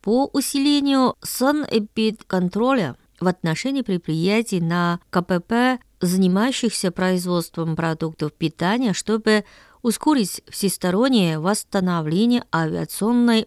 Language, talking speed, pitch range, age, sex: Russian, 75 wpm, 170-230 Hz, 20-39, female